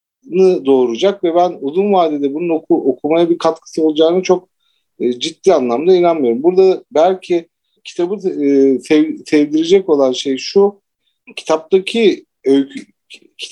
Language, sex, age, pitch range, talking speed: Turkish, male, 50-69, 145-190 Hz, 100 wpm